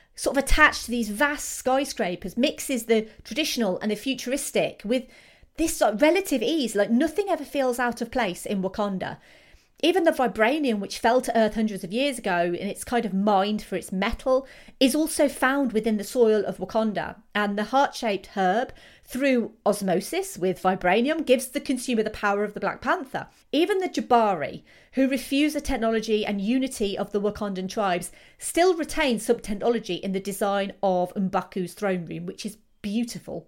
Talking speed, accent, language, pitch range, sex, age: 175 wpm, British, English, 205-275 Hz, female, 30-49